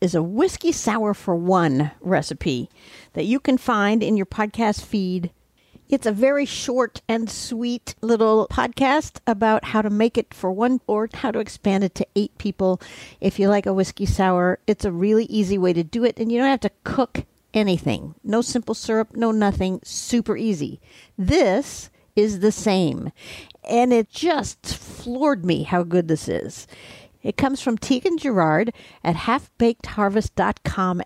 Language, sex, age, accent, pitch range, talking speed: English, female, 50-69, American, 190-235 Hz, 165 wpm